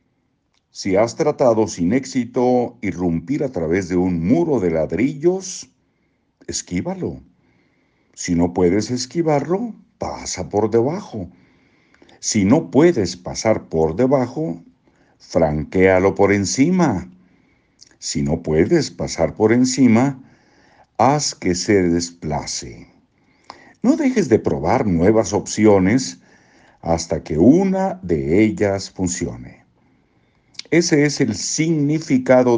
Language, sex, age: Spanish, male, 60-79